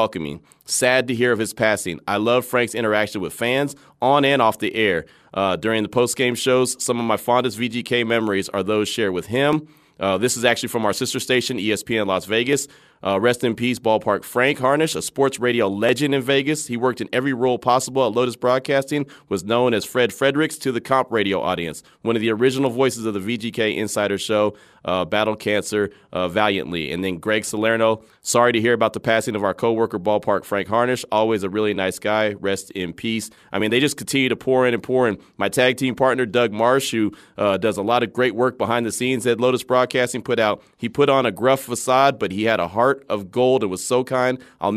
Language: English